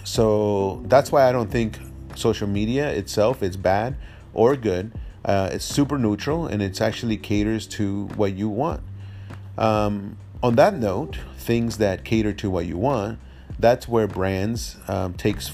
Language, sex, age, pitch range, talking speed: English, male, 30-49, 95-110 Hz, 160 wpm